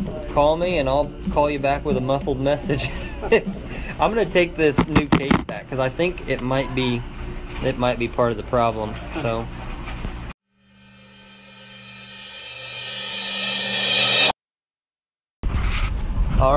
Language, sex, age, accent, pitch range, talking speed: English, male, 20-39, American, 105-135 Hz, 120 wpm